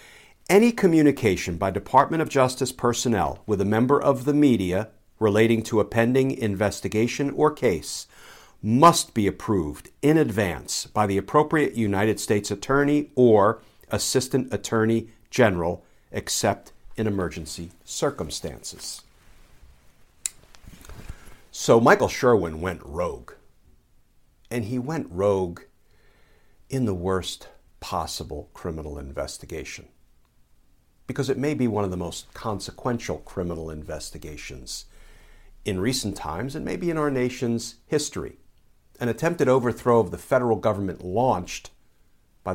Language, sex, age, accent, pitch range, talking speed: English, male, 60-79, American, 95-130 Hz, 115 wpm